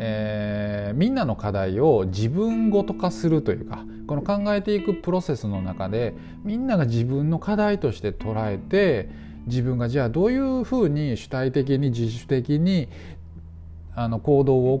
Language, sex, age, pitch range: Japanese, male, 20-39, 100-160 Hz